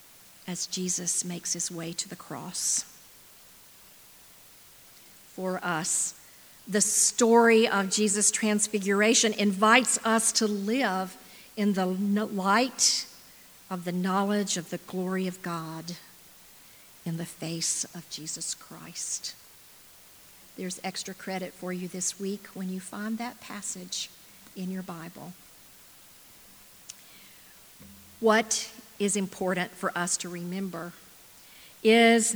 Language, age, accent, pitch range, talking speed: English, 50-69, American, 180-220 Hz, 110 wpm